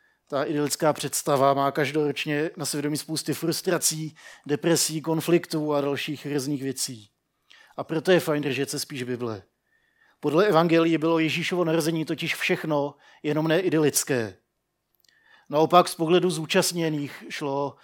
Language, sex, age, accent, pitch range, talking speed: Czech, male, 50-69, native, 140-165 Hz, 125 wpm